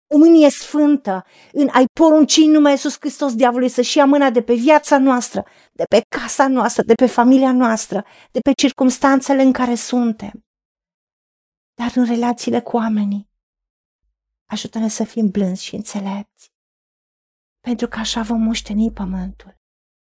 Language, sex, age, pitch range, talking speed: Romanian, female, 30-49, 230-280 Hz, 145 wpm